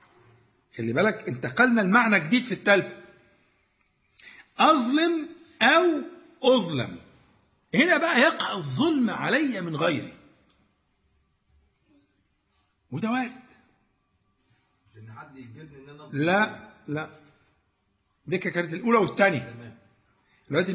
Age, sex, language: 60-79, male, Arabic